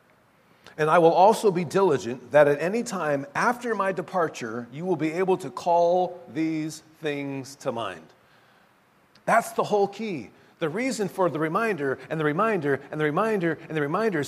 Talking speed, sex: 170 wpm, male